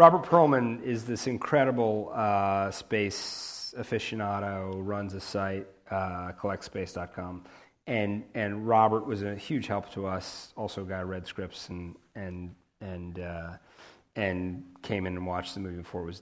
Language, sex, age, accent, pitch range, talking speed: English, male, 30-49, American, 90-110 Hz, 155 wpm